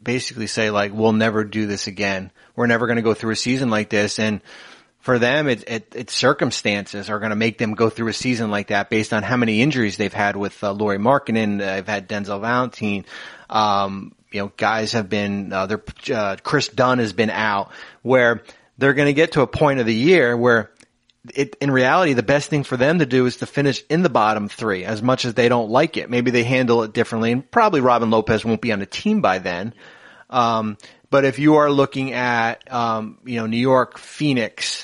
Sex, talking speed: male, 225 wpm